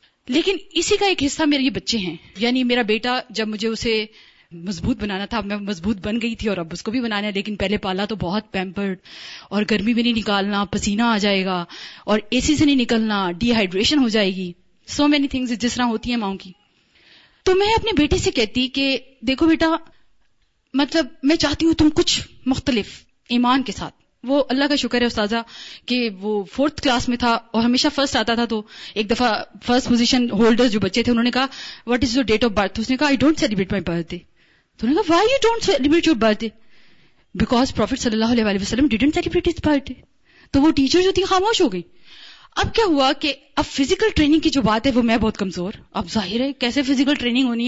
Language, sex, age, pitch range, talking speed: Urdu, female, 20-39, 215-285 Hz, 175 wpm